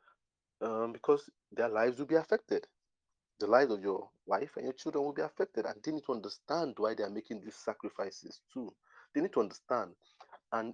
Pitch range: 105-170 Hz